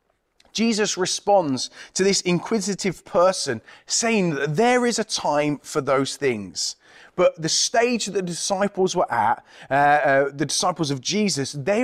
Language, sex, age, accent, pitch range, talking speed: English, male, 30-49, British, 155-225 Hz, 150 wpm